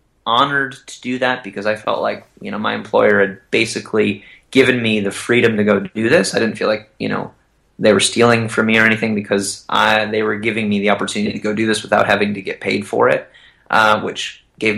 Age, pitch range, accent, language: 20-39, 100-115 Hz, American, English